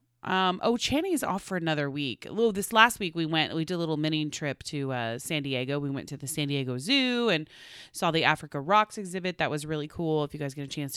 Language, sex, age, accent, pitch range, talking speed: English, female, 30-49, American, 145-185 Hz, 250 wpm